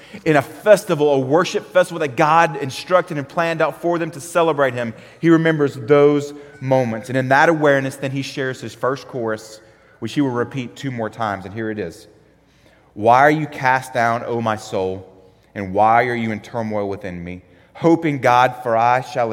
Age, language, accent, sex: 30-49, English, American, male